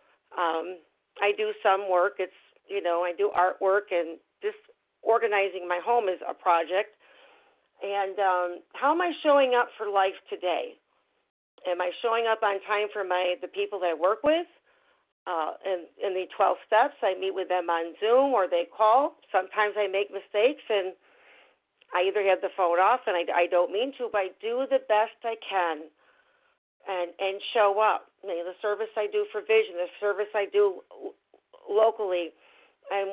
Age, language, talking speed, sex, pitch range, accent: 50-69, English, 185 wpm, female, 185-245 Hz, American